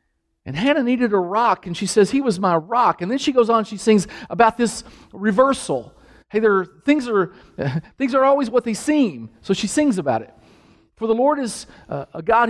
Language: English